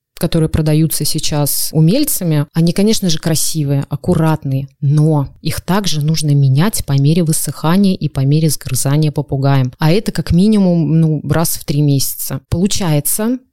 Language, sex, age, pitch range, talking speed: Russian, female, 20-39, 155-190 Hz, 140 wpm